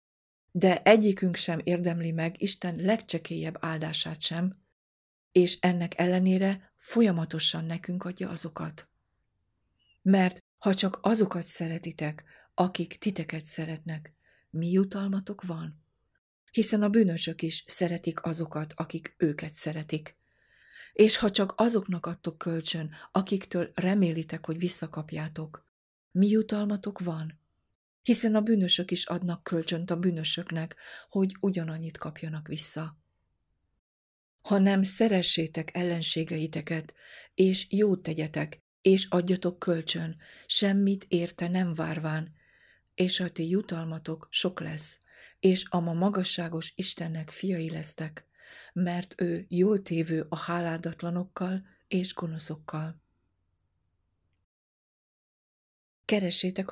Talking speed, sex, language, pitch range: 105 wpm, female, Hungarian, 160-185 Hz